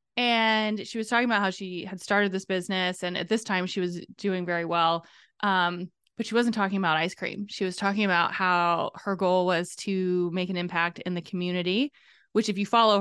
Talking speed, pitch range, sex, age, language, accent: 215 wpm, 185-230 Hz, female, 20-39, English, American